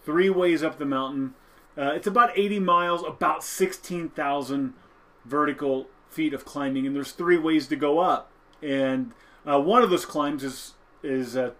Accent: American